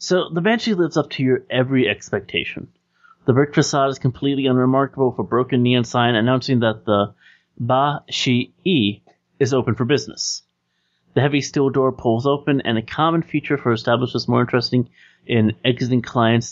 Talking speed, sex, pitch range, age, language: 165 wpm, male, 110-145 Hz, 30-49, English